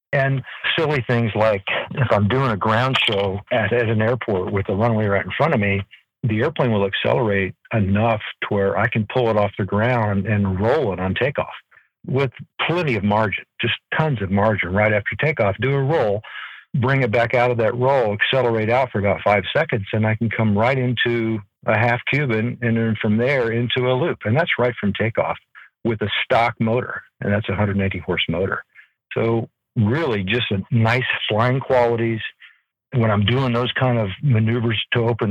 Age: 50-69